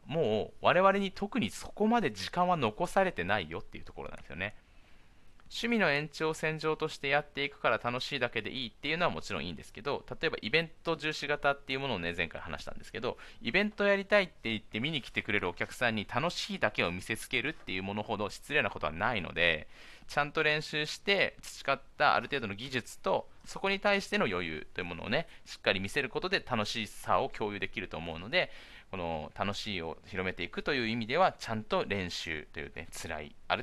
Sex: male